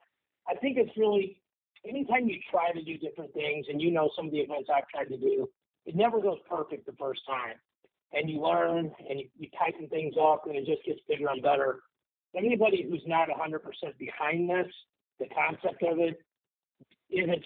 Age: 50-69